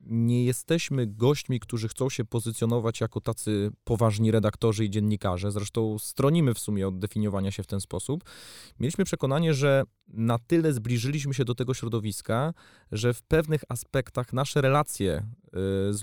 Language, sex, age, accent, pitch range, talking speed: Polish, male, 20-39, native, 110-140 Hz, 150 wpm